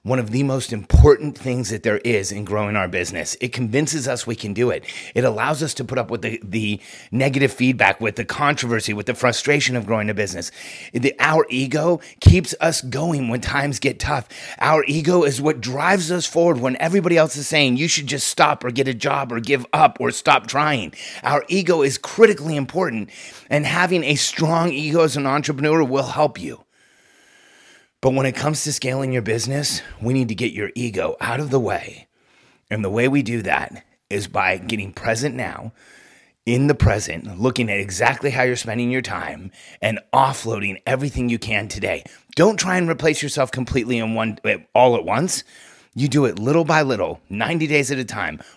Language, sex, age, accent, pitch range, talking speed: English, male, 30-49, American, 115-150 Hz, 200 wpm